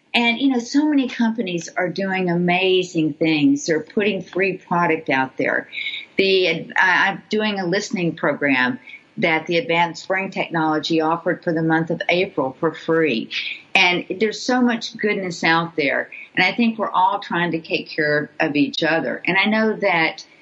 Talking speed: 170 wpm